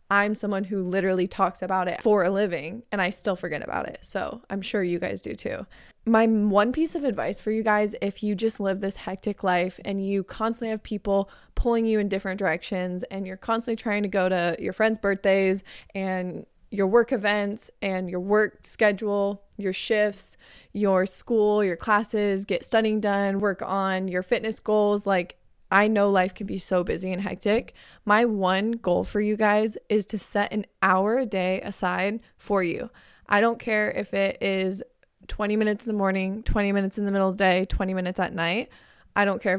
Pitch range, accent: 190-215 Hz, American